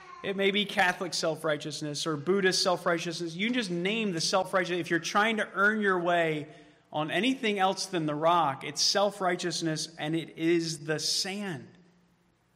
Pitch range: 150-185 Hz